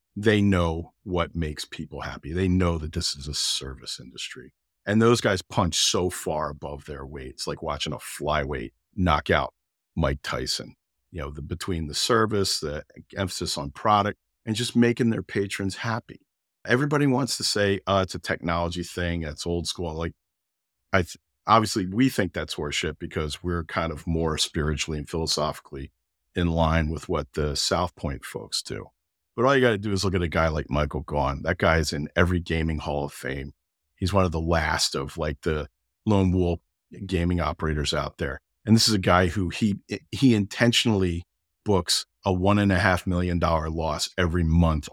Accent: American